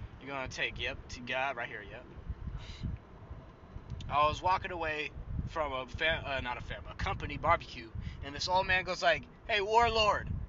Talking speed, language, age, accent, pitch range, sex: 170 wpm, English, 20-39, American, 130-185 Hz, male